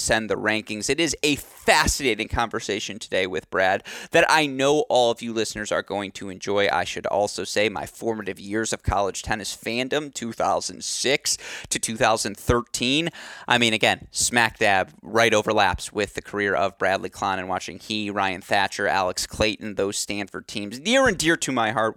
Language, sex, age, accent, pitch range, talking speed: English, male, 30-49, American, 105-145 Hz, 180 wpm